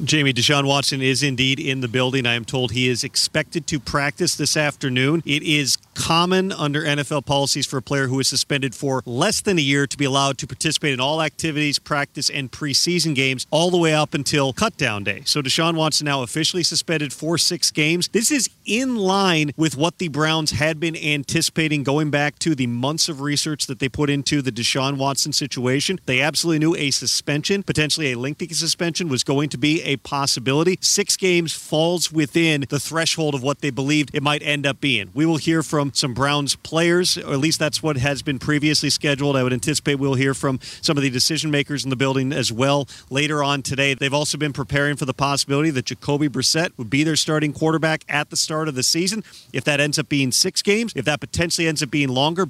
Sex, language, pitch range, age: male, English, 140-160 Hz, 40-59